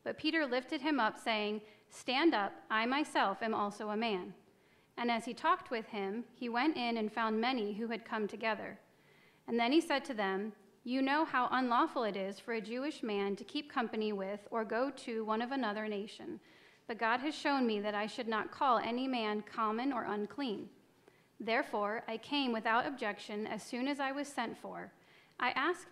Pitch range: 210-270 Hz